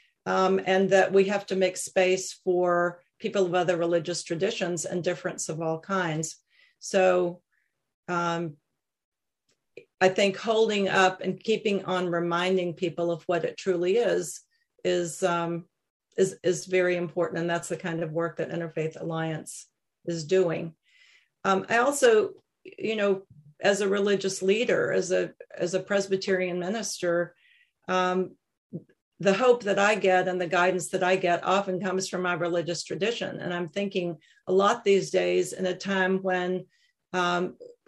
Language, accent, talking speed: English, American, 155 wpm